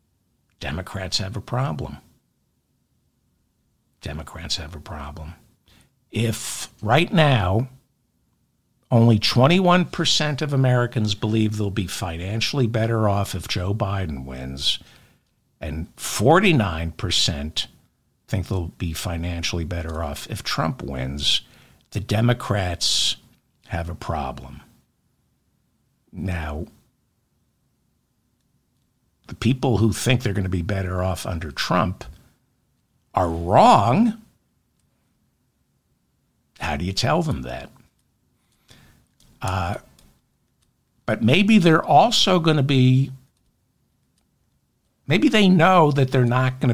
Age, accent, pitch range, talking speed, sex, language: 60-79, American, 90-130 Hz, 100 wpm, male, English